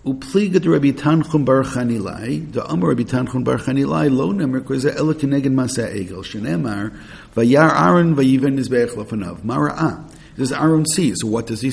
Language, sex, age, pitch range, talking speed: English, male, 50-69, 110-145 Hz, 160 wpm